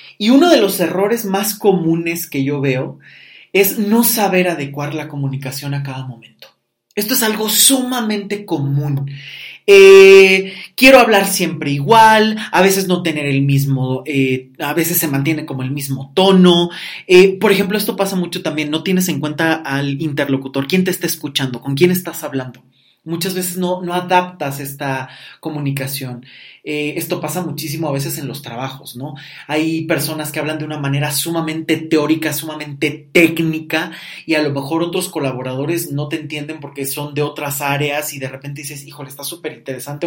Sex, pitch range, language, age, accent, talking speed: male, 140-175 Hz, Spanish, 30-49, Mexican, 170 wpm